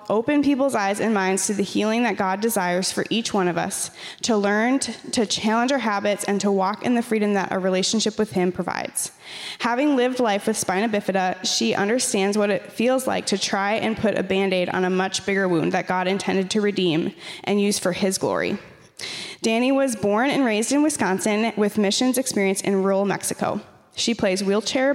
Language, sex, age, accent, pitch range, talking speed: English, female, 10-29, American, 190-230 Hz, 200 wpm